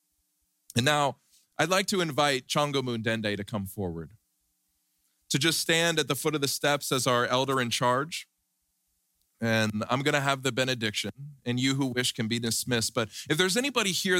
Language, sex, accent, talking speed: English, male, American, 185 wpm